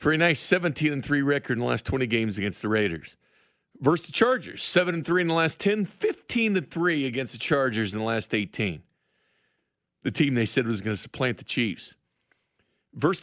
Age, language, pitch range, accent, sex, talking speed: 50-69, English, 105-155 Hz, American, male, 205 wpm